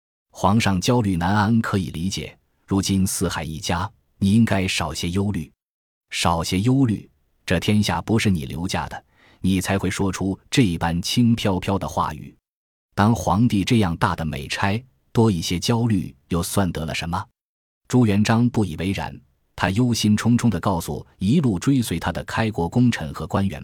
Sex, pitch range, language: male, 85-115 Hz, Chinese